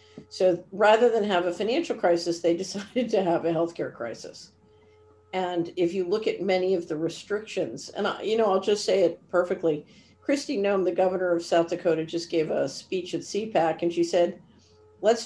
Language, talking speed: English, 195 wpm